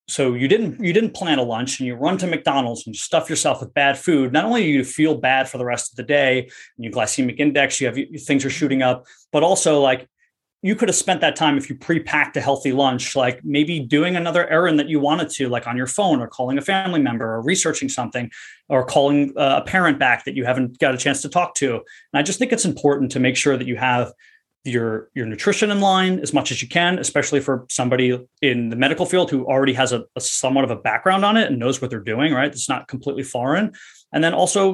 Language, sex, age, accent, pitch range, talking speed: English, male, 30-49, American, 125-155 Hz, 250 wpm